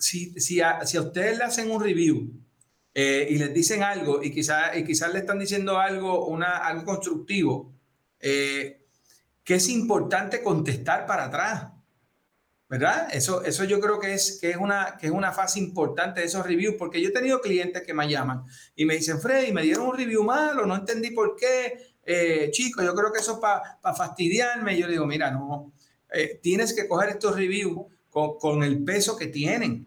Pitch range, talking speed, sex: 150-210 Hz, 200 wpm, male